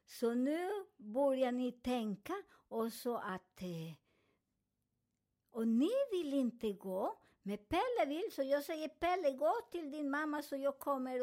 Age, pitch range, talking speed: 50-69, 235-305 Hz, 145 wpm